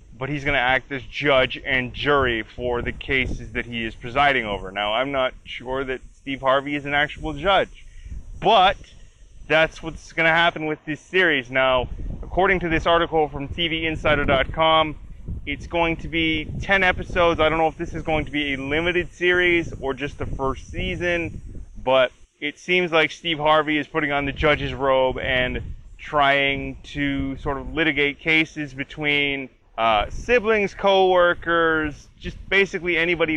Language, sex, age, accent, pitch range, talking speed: English, male, 20-39, American, 130-160 Hz, 165 wpm